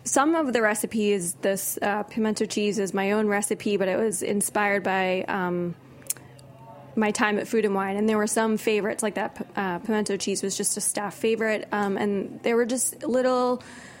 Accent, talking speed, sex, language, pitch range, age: American, 190 wpm, female, English, 190-215 Hz, 20-39